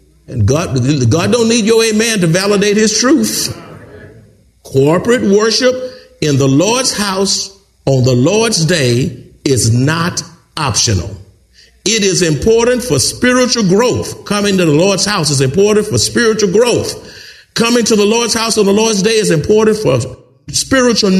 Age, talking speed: 50-69, 145 wpm